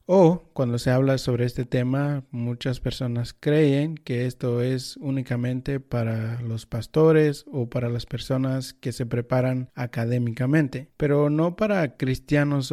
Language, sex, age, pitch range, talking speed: Spanish, male, 30-49, 120-145 Hz, 135 wpm